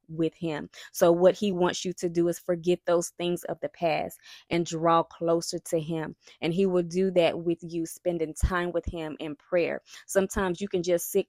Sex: female